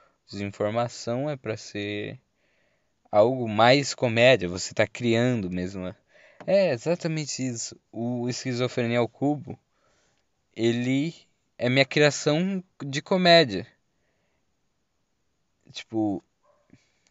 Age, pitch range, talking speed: 20-39, 110-145 Hz, 90 wpm